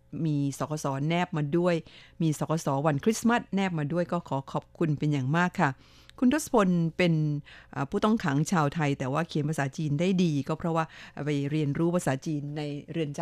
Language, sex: Thai, female